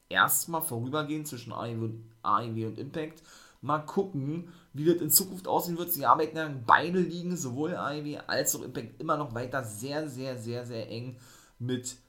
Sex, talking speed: male, 165 wpm